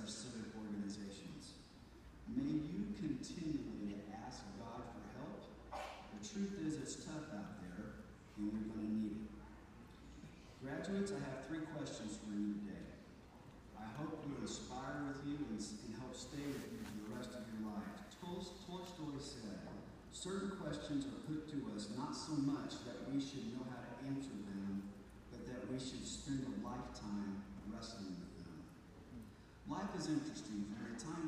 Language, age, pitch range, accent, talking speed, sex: English, 40-59, 105-150 Hz, American, 165 wpm, male